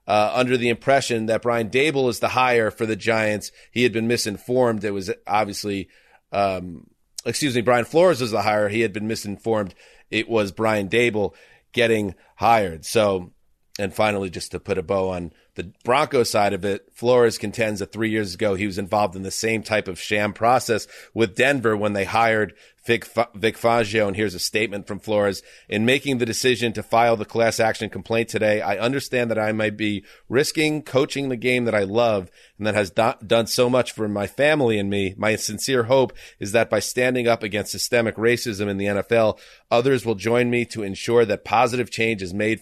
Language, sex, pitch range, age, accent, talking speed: English, male, 105-120 Hz, 30-49, American, 200 wpm